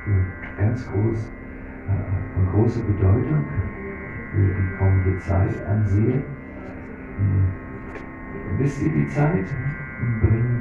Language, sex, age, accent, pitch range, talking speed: German, male, 60-79, German, 90-110 Hz, 95 wpm